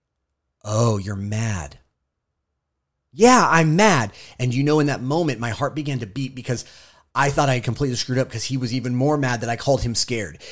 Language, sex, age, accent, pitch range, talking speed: English, male, 30-49, American, 105-135 Hz, 205 wpm